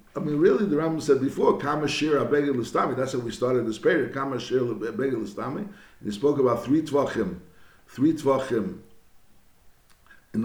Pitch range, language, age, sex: 120-165 Hz, English, 60-79, male